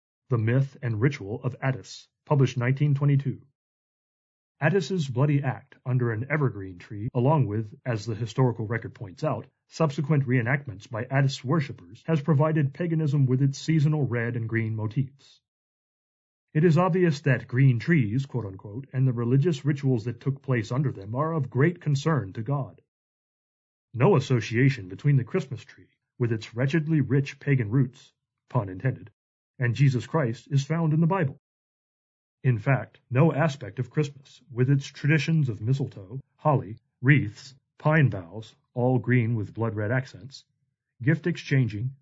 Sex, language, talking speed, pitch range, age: male, English, 145 wpm, 120-145 Hz, 30-49